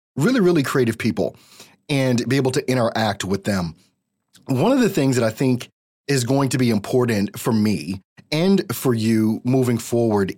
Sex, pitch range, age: male, 105-140 Hz, 30-49